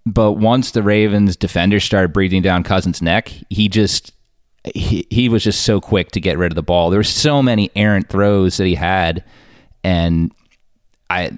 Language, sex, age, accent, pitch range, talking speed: English, male, 30-49, American, 90-105 Hz, 185 wpm